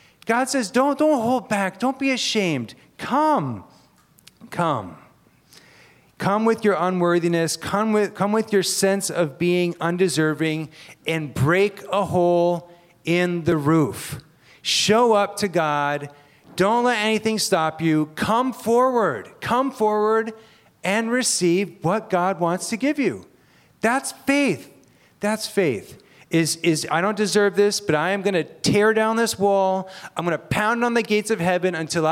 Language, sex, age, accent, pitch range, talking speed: English, male, 40-59, American, 155-210 Hz, 150 wpm